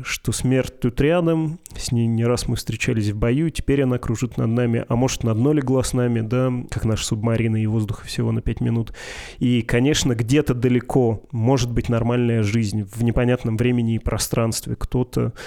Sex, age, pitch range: male, 20-39, 115-130 Hz